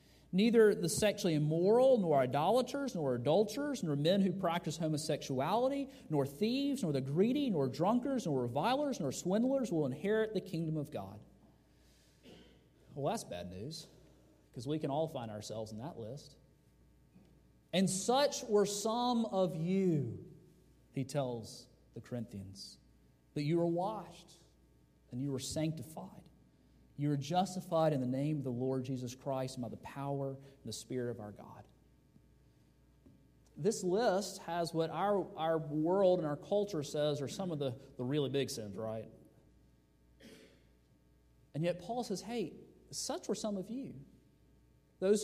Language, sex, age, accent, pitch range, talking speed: English, male, 40-59, American, 130-195 Hz, 150 wpm